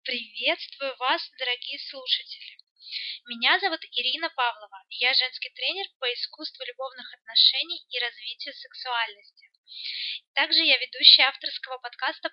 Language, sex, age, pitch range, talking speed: Russian, female, 20-39, 250-340 Hz, 110 wpm